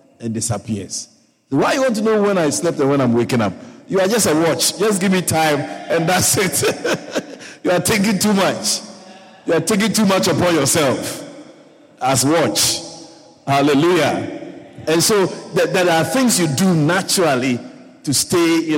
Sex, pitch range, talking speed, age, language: male, 140-225 Hz, 170 wpm, 50-69, English